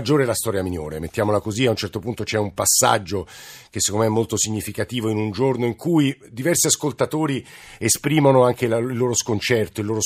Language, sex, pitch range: Italian, male, 100-125 Hz